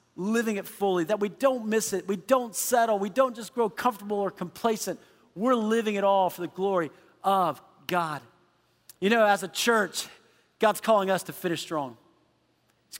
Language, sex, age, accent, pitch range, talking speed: English, male, 40-59, American, 185-240 Hz, 180 wpm